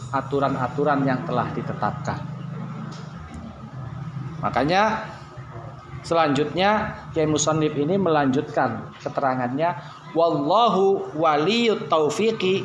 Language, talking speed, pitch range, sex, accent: Indonesian, 65 wpm, 140-185 Hz, male, native